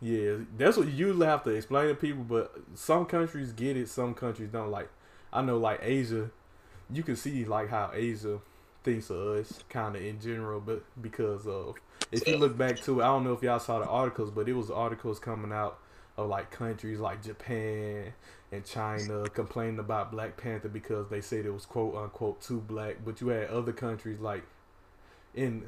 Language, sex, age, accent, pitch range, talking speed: English, male, 20-39, American, 105-115 Hz, 200 wpm